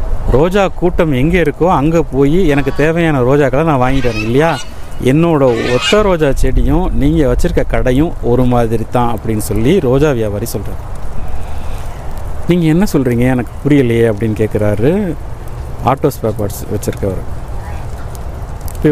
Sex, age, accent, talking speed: male, 50-69, native, 120 wpm